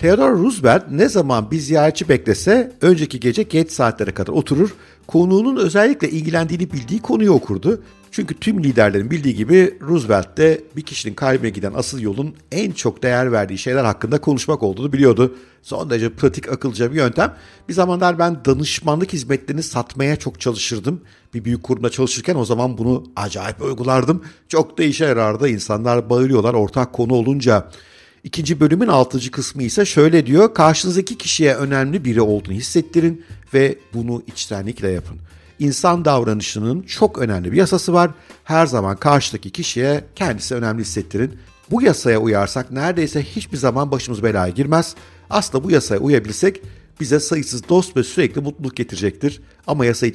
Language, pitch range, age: Turkish, 115-155 Hz, 50-69